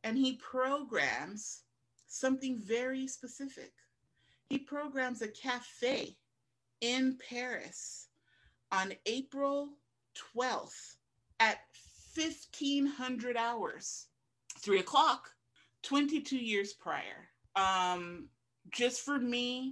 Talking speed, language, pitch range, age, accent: 80 wpm, English, 155-235 Hz, 30-49, American